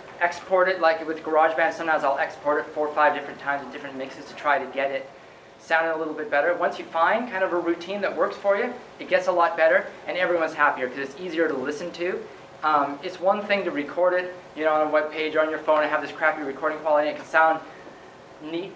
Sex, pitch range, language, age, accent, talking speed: male, 145-170 Hz, English, 30-49, American, 255 wpm